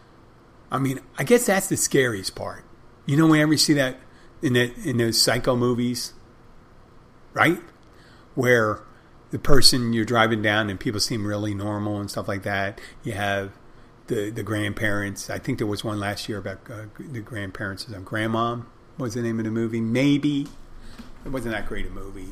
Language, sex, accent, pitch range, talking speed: English, male, American, 110-125 Hz, 175 wpm